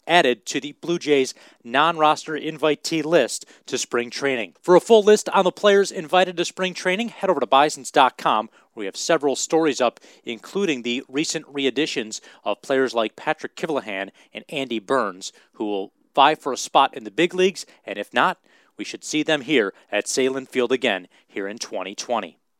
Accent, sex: American, male